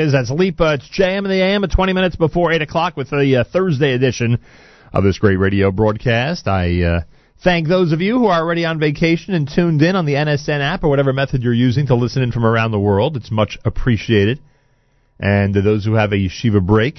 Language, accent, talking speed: English, American, 225 wpm